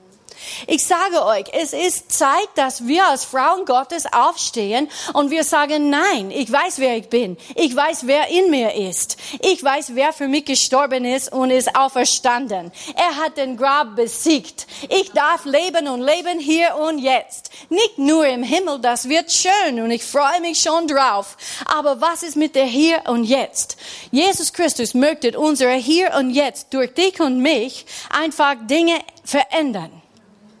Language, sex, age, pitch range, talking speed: German, female, 30-49, 245-315 Hz, 165 wpm